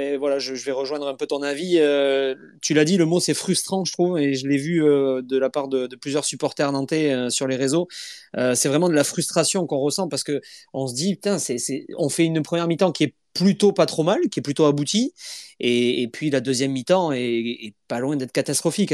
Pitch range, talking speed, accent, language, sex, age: 135-170 Hz, 255 wpm, French, French, male, 30-49